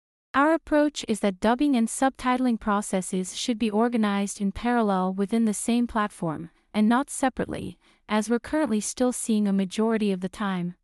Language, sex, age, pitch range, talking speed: English, female, 30-49, 200-245 Hz, 165 wpm